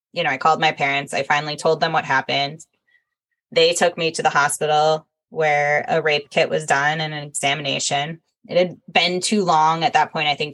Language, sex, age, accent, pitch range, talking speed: English, female, 10-29, American, 150-185 Hz, 210 wpm